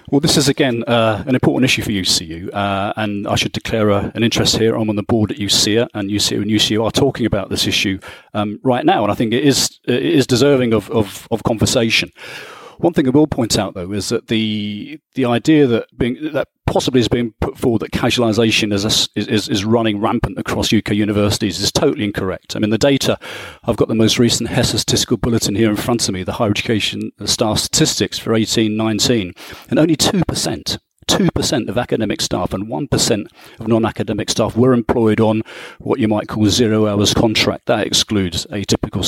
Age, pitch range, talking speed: 40-59, 105-125 Hz, 200 wpm